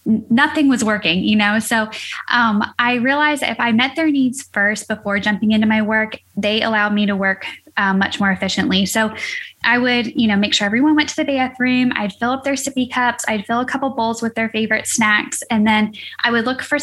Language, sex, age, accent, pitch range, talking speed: English, female, 10-29, American, 210-250 Hz, 220 wpm